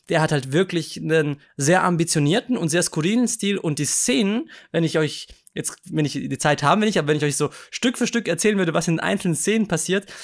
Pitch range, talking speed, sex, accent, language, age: 150-185 Hz, 235 wpm, male, German, German, 20-39